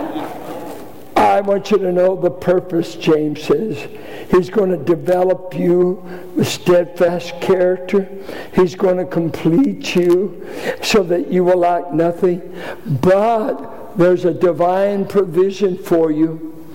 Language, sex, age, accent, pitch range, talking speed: English, male, 60-79, American, 175-215 Hz, 125 wpm